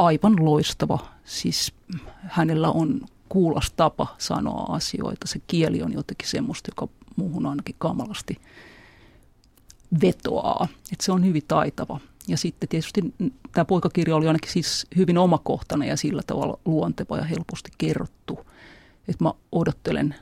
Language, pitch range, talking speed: Finnish, 155-185 Hz, 130 wpm